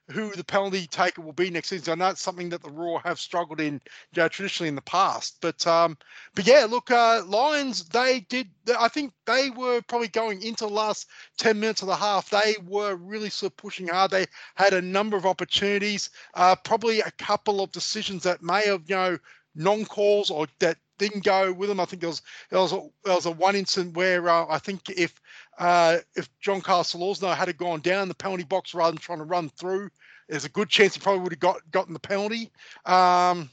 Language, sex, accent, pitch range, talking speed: English, male, Australian, 165-205 Hz, 230 wpm